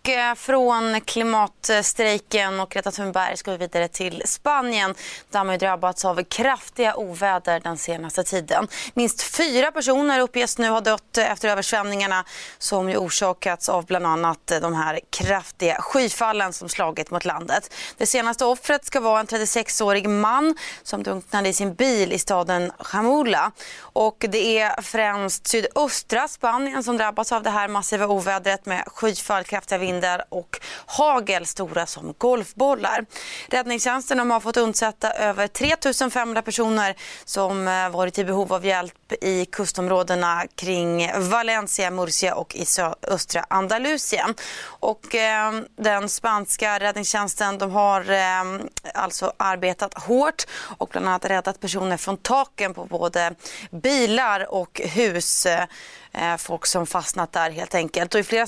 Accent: native